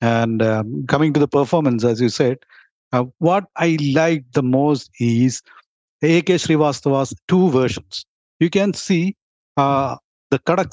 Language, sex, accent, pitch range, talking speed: English, male, Indian, 135-180 Hz, 145 wpm